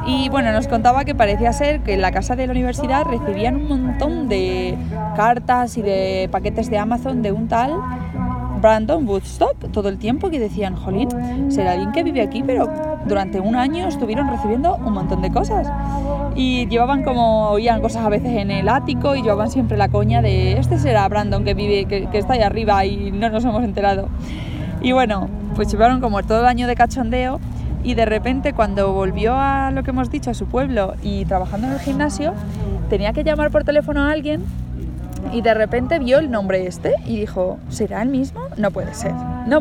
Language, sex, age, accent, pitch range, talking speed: Spanish, female, 20-39, Spanish, 205-265 Hz, 200 wpm